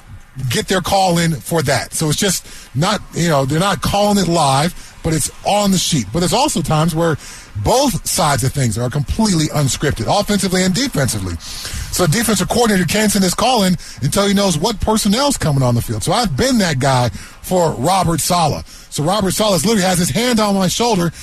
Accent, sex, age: American, male, 30-49